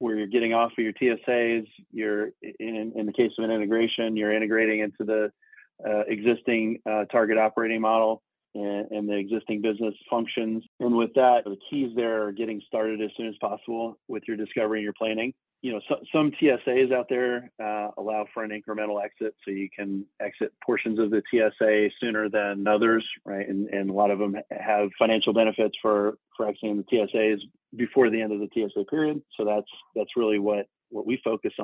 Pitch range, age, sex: 105-120 Hz, 30-49, male